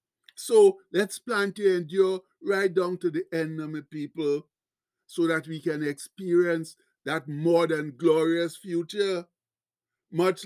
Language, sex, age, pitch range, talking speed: English, male, 60-79, 175-210 Hz, 125 wpm